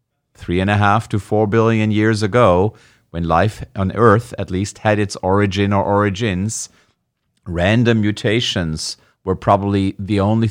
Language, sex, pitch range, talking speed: English, male, 90-115 Hz, 150 wpm